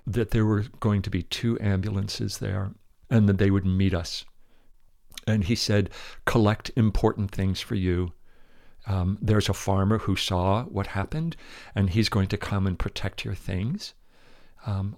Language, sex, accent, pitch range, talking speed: English, male, American, 95-115 Hz, 165 wpm